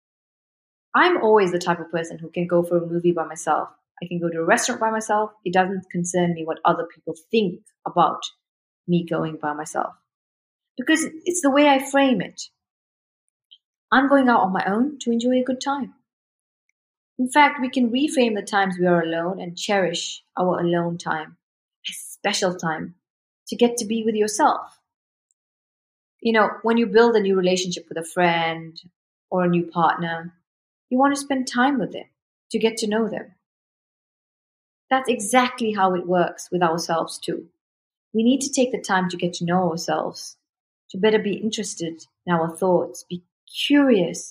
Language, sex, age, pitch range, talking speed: English, female, 30-49, 170-235 Hz, 180 wpm